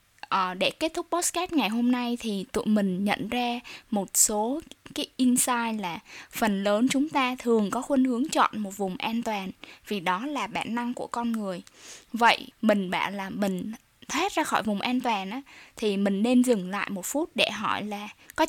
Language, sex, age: Vietnamese, female, 10-29